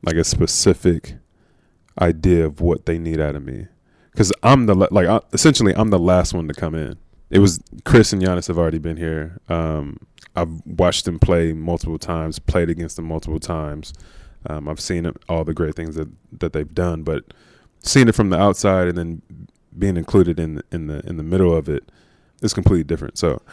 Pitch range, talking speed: 80-95 Hz, 195 wpm